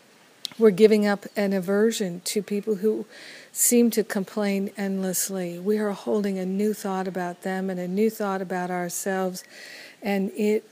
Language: English